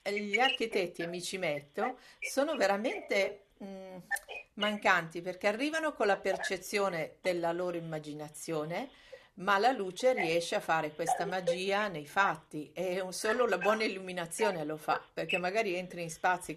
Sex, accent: female, native